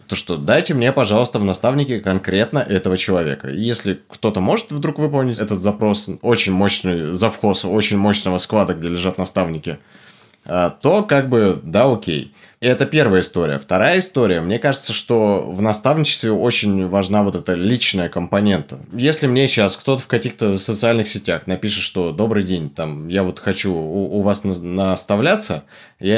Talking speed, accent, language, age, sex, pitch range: 165 wpm, native, Russian, 20-39, male, 90-110 Hz